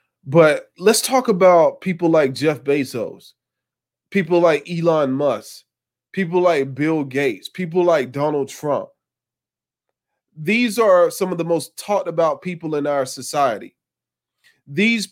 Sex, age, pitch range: male, 20-39, 130-165 Hz